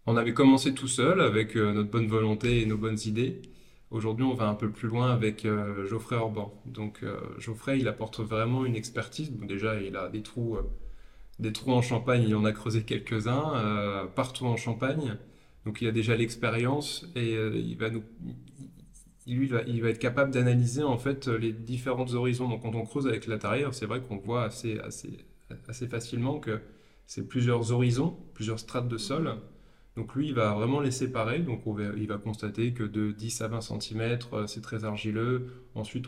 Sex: male